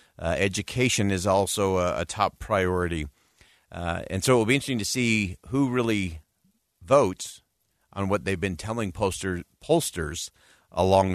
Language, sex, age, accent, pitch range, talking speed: English, male, 50-69, American, 90-115 Hz, 145 wpm